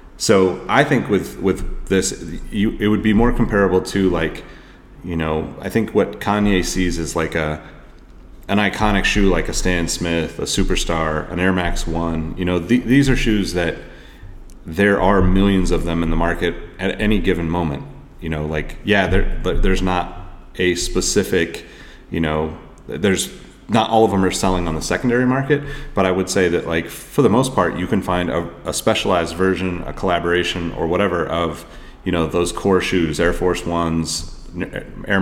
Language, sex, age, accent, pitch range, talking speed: English, male, 30-49, American, 80-95 Hz, 185 wpm